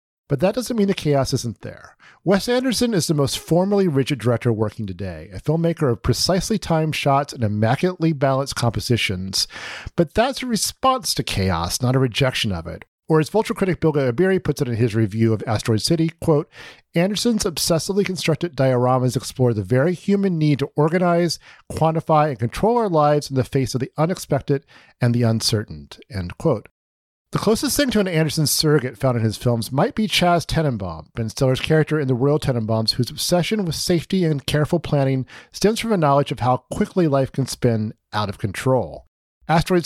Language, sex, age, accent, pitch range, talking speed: English, male, 40-59, American, 115-170 Hz, 185 wpm